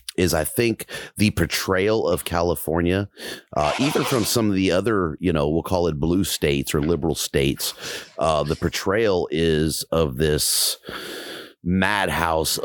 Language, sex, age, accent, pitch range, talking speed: English, male, 30-49, American, 75-95 Hz, 145 wpm